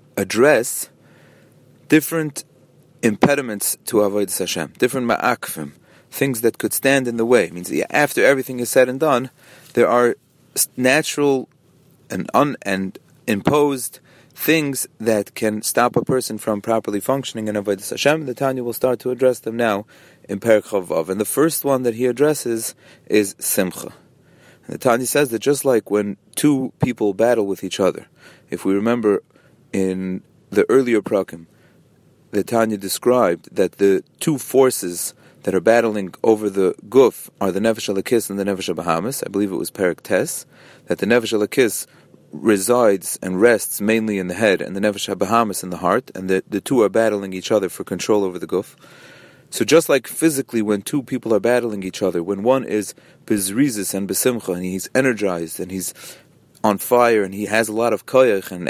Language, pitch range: English, 100-130 Hz